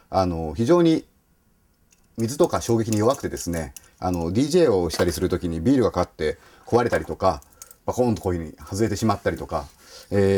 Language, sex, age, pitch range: Japanese, male, 40-59, 85-125 Hz